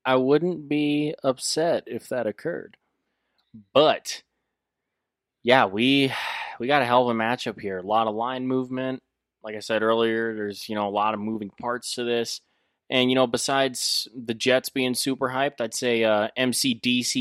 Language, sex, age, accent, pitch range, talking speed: English, male, 20-39, American, 105-125 Hz, 180 wpm